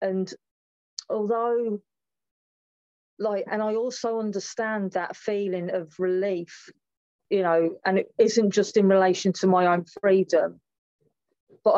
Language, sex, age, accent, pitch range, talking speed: English, female, 40-59, British, 170-210 Hz, 120 wpm